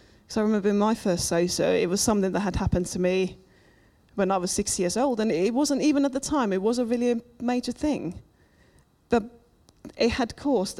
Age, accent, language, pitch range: 30-49, British, English, 195-245 Hz